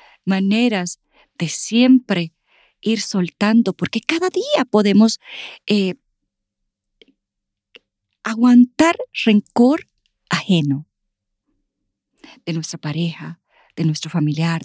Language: English